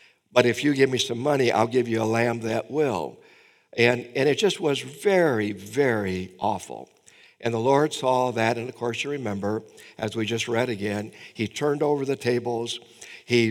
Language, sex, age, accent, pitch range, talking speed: English, male, 60-79, American, 110-135 Hz, 190 wpm